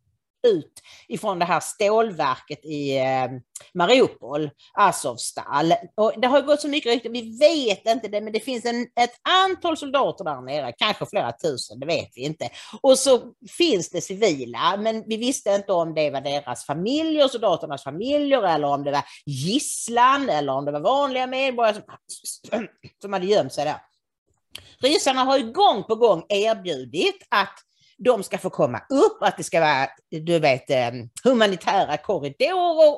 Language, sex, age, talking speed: English, female, 40-59, 165 wpm